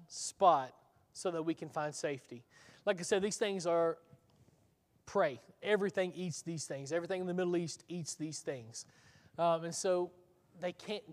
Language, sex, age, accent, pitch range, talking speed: English, male, 20-39, American, 145-175 Hz, 165 wpm